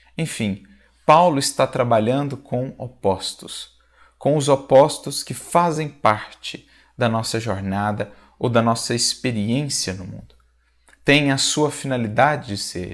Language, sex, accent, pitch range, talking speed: Portuguese, male, Brazilian, 110-140 Hz, 125 wpm